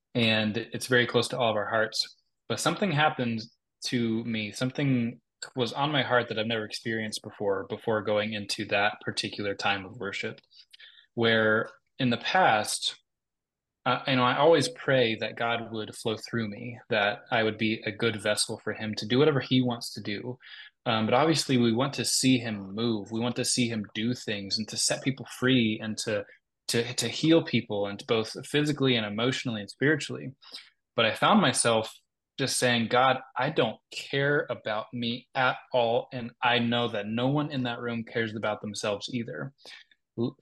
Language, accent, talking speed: English, American, 190 wpm